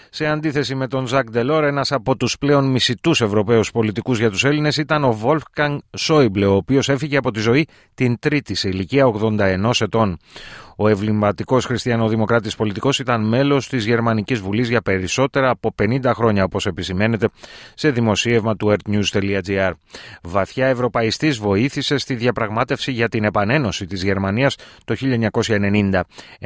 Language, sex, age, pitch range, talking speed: Greek, male, 30-49, 100-130 Hz, 145 wpm